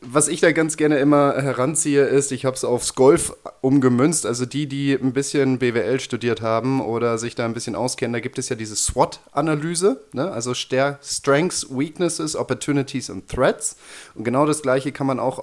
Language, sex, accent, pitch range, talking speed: German, male, German, 115-140 Hz, 185 wpm